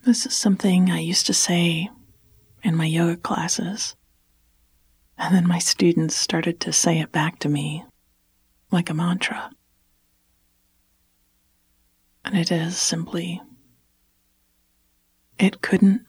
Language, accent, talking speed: English, American, 115 wpm